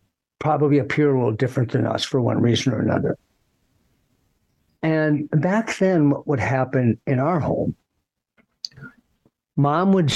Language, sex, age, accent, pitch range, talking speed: English, male, 60-79, American, 120-150 Hz, 135 wpm